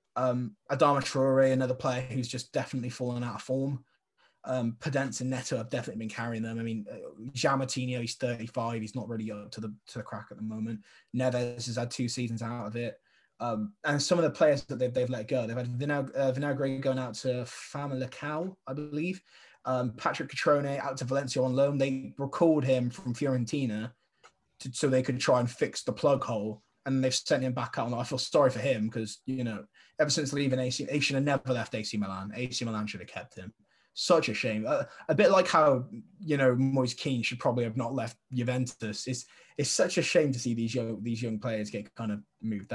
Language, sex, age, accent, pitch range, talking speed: English, male, 20-39, British, 115-135 Hz, 220 wpm